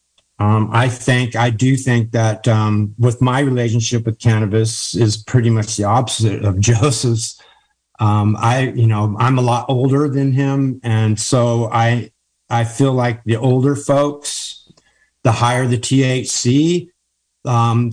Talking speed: 145 wpm